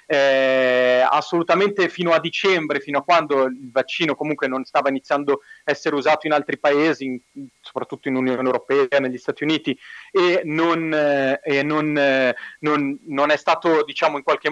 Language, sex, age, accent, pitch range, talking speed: Italian, male, 30-49, native, 140-185 Hz, 170 wpm